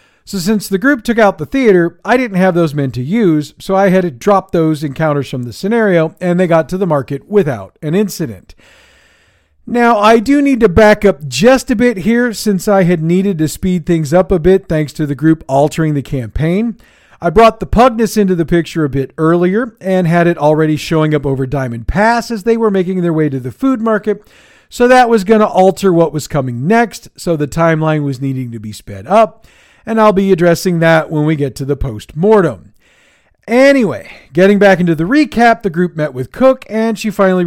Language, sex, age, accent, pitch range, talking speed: English, male, 40-59, American, 150-220 Hz, 215 wpm